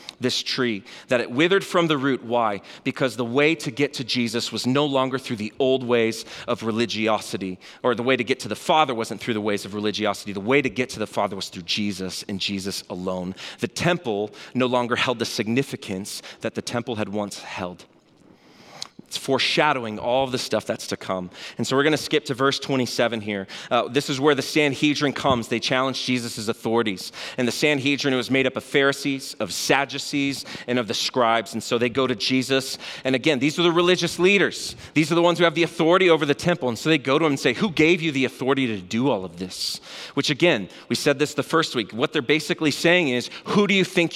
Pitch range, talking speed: 115-150 Hz, 225 wpm